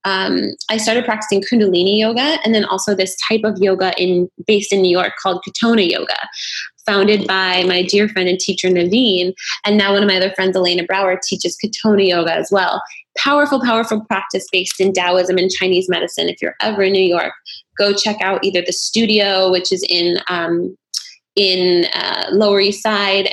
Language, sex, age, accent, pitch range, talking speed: English, female, 20-39, American, 180-210 Hz, 190 wpm